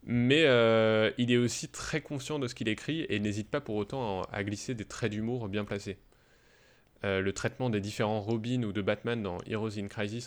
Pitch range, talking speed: 100-120 Hz, 215 wpm